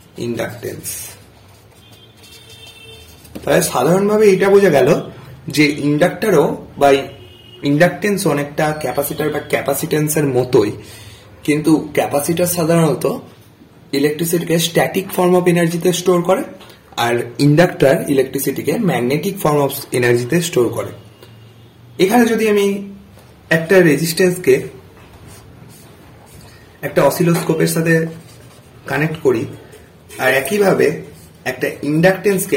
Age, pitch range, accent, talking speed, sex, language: 30-49, 140-175 Hz, native, 60 wpm, male, Bengali